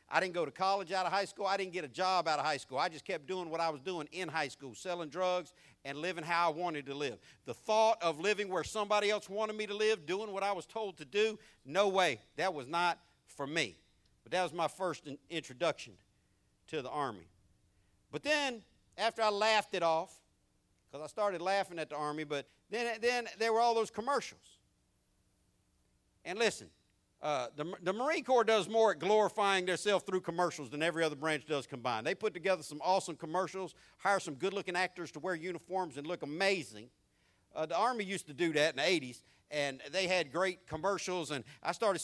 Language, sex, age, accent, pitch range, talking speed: English, male, 60-79, American, 150-195 Hz, 210 wpm